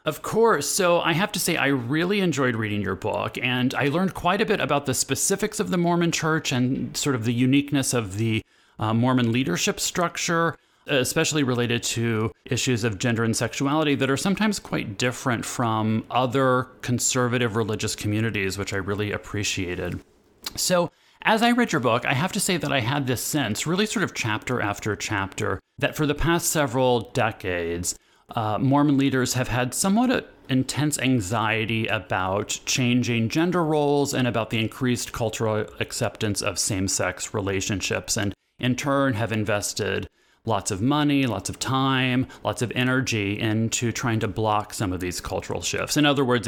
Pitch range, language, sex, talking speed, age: 105-140 Hz, English, male, 170 wpm, 30-49